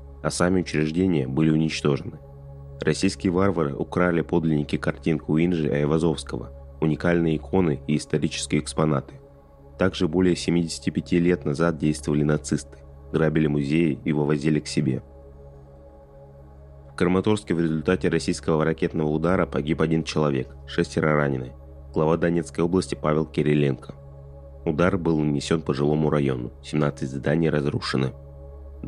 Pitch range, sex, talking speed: 70-85 Hz, male, 120 wpm